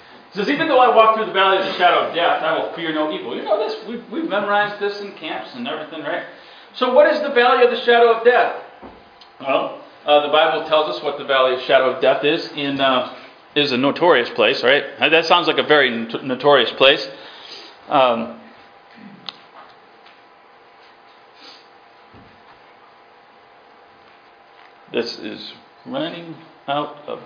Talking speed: 165 wpm